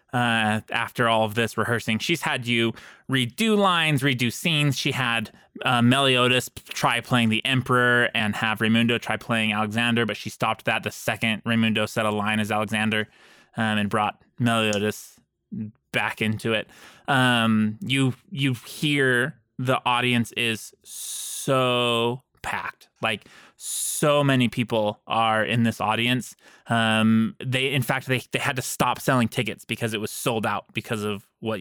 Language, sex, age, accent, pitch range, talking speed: English, male, 20-39, American, 110-135 Hz, 155 wpm